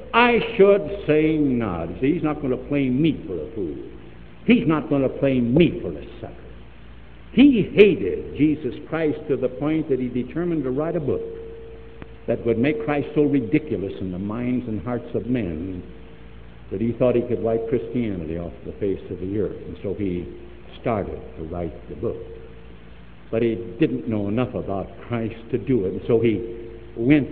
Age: 70-89